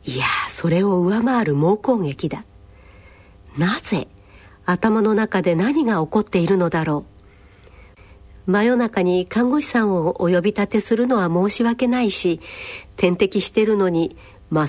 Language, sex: Japanese, female